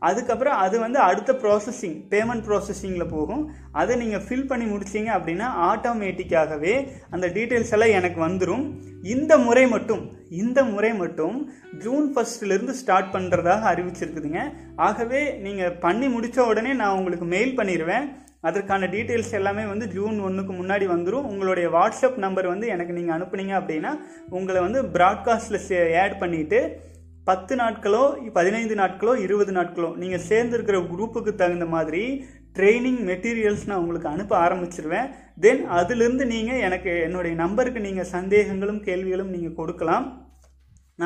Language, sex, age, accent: Tamil, male, 30-49, native